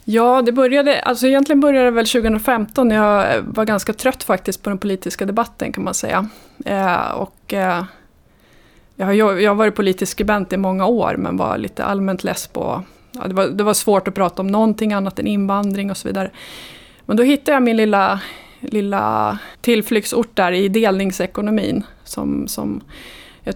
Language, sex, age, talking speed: Swedish, female, 20-39, 175 wpm